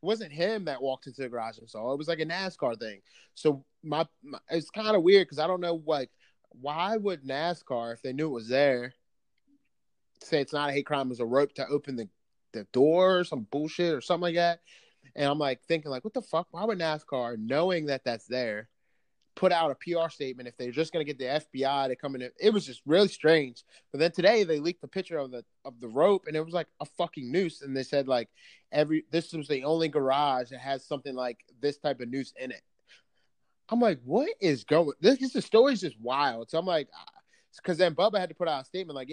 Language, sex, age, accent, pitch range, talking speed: English, male, 30-49, American, 135-170 Hz, 240 wpm